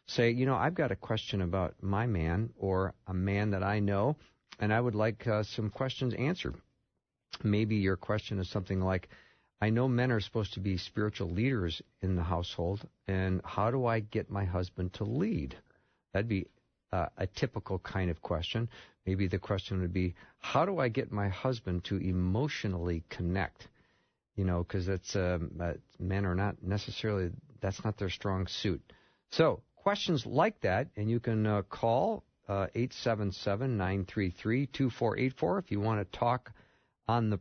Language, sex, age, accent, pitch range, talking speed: English, male, 50-69, American, 95-120 Hz, 165 wpm